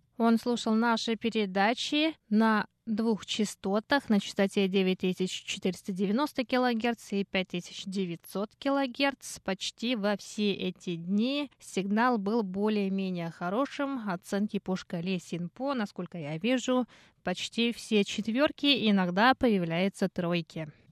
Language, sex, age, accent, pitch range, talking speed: Russian, female, 20-39, native, 195-245 Hz, 105 wpm